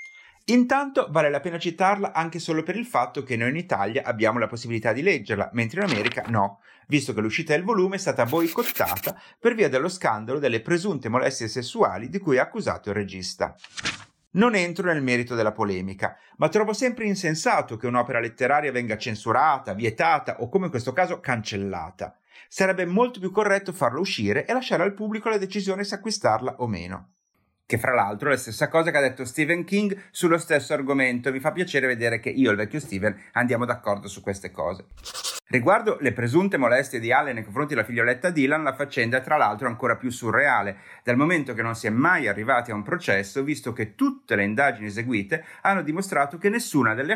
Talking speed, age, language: 195 wpm, 30-49, Italian